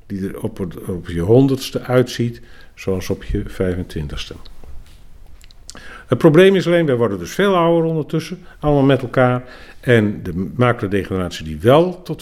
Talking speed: 150 wpm